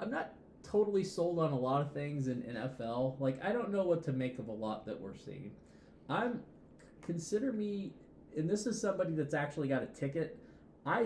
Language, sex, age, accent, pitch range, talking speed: English, male, 20-39, American, 115-160 Hz, 200 wpm